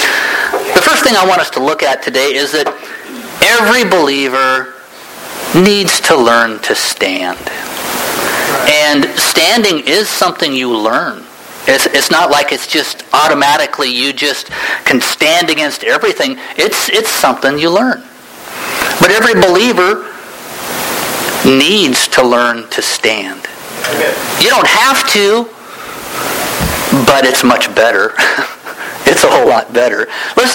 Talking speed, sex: 125 wpm, male